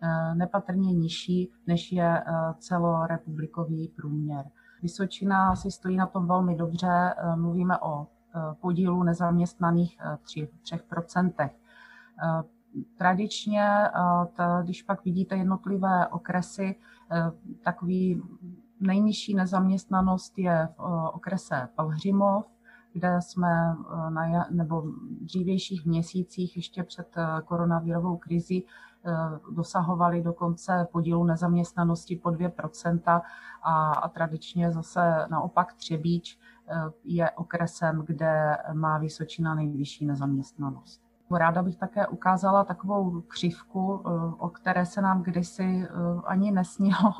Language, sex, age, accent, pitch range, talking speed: Czech, female, 30-49, native, 170-190 Hz, 95 wpm